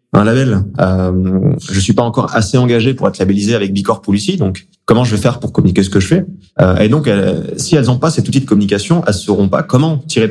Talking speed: 255 wpm